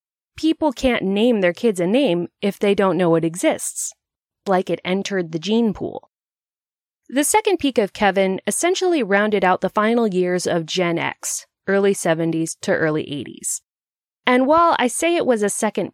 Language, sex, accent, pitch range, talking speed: English, female, American, 180-270 Hz, 175 wpm